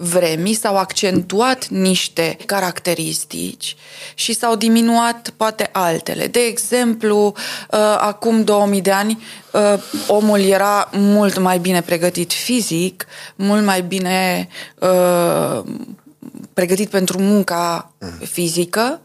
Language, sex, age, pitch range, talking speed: Romanian, female, 20-39, 170-220 Hz, 95 wpm